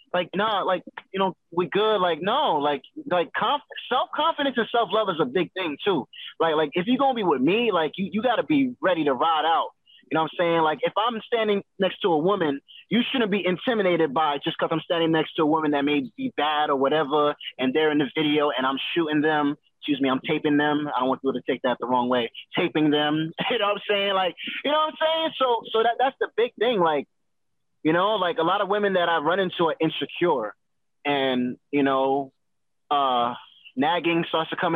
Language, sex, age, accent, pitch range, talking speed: English, male, 20-39, American, 155-220 Hz, 240 wpm